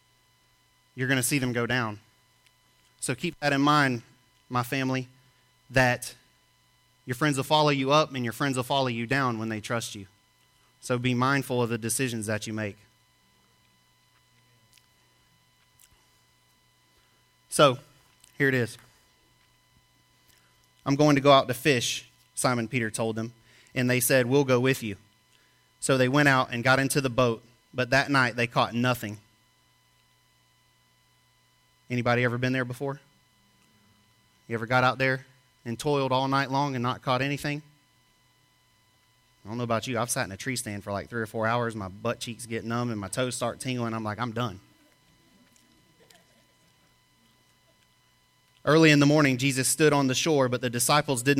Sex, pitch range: male, 115-135 Hz